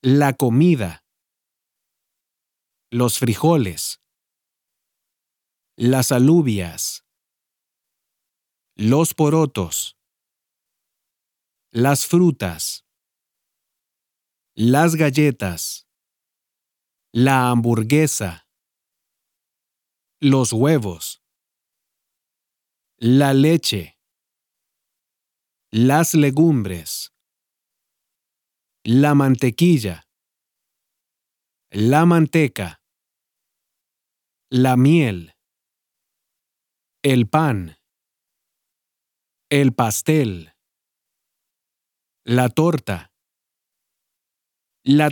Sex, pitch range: male, 100-150 Hz